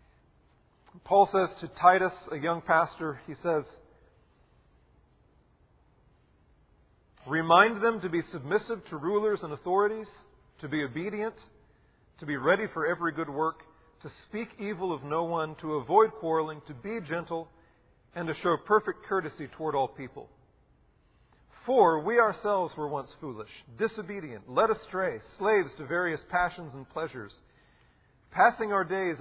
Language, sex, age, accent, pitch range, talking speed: English, male, 40-59, American, 150-205 Hz, 135 wpm